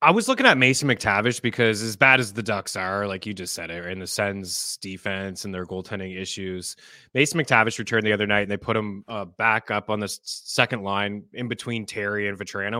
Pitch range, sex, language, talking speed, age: 100-115 Hz, male, English, 225 wpm, 20-39